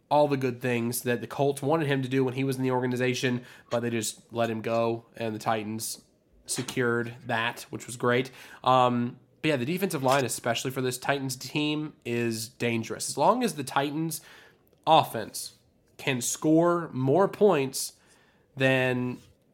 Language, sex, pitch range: English, male, 115-140 Hz